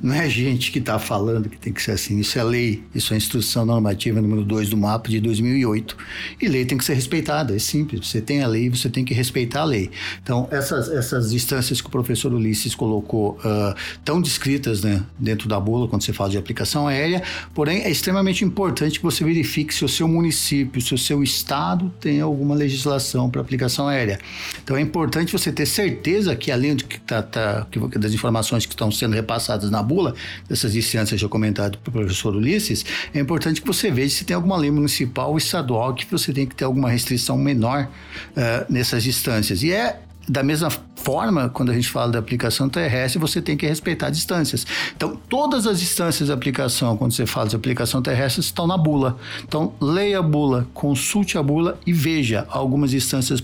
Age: 60-79